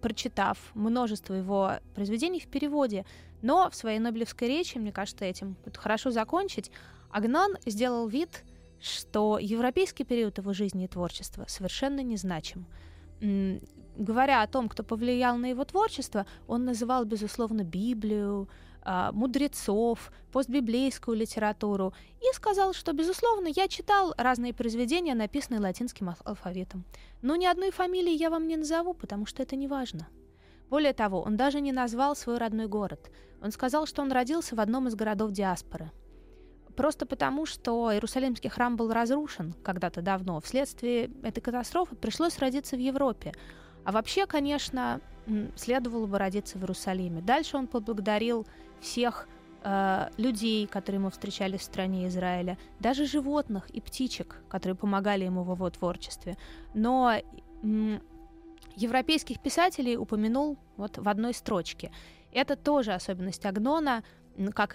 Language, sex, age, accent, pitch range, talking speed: Russian, female, 20-39, native, 195-270 Hz, 135 wpm